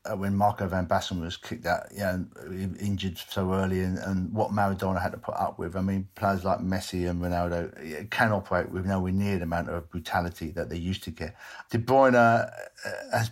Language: English